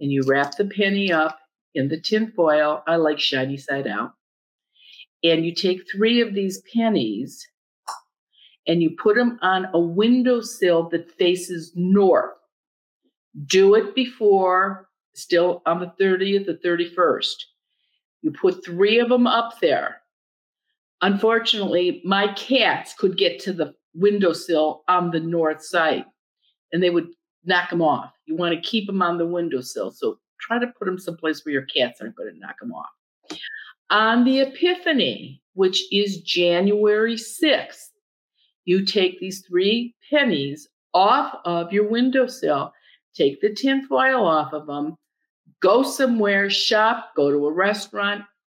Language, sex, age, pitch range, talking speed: English, female, 50-69, 170-220 Hz, 145 wpm